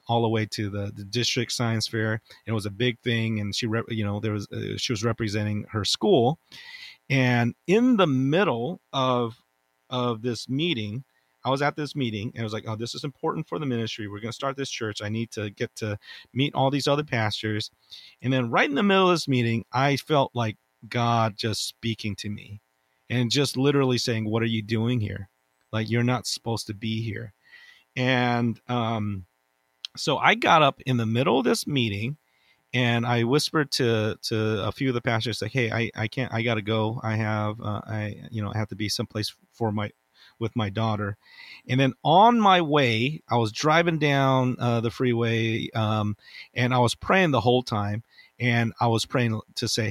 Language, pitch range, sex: English, 110-125 Hz, male